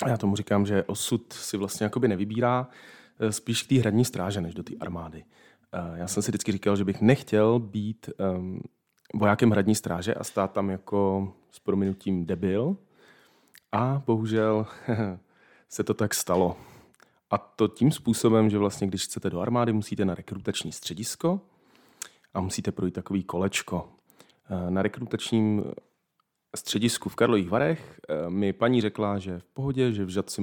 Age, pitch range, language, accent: 30-49, 95-115 Hz, Czech, native